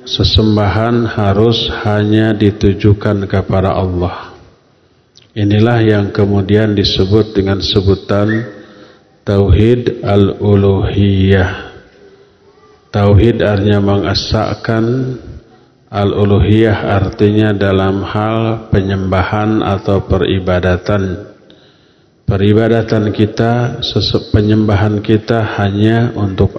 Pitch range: 100-115 Hz